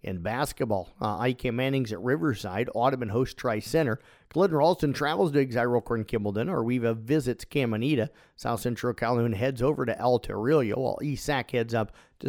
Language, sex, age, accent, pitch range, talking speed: English, male, 50-69, American, 115-135 Hz, 155 wpm